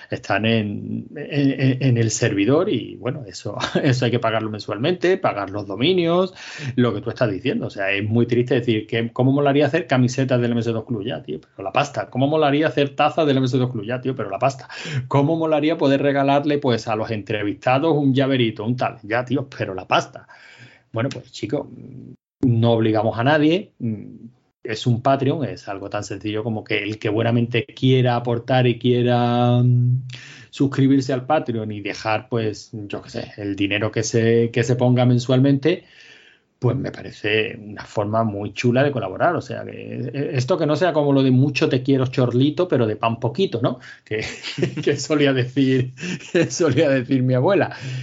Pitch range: 115-140 Hz